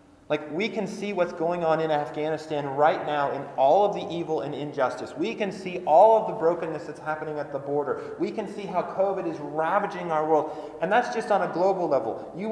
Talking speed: 225 wpm